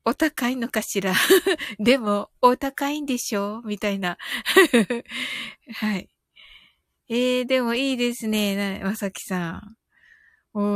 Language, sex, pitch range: Japanese, female, 180-240 Hz